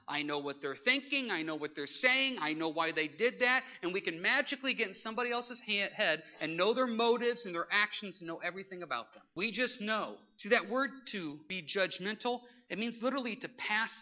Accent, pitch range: American, 175-255 Hz